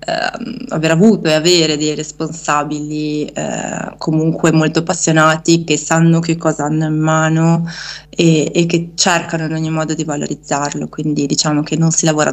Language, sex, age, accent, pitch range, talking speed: Italian, female, 20-39, native, 150-170 Hz, 160 wpm